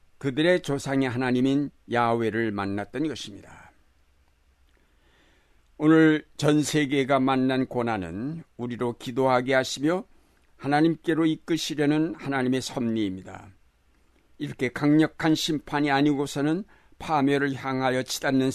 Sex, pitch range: male, 105-145 Hz